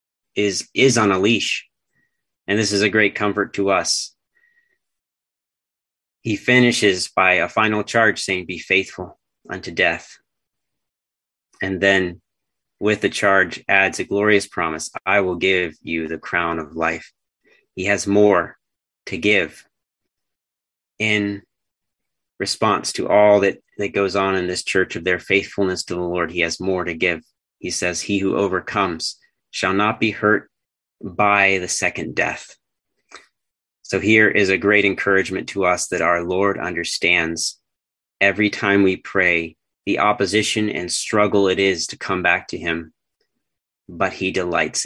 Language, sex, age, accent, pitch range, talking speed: English, male, 30-49, American, 85-105 Hz, 150 wpm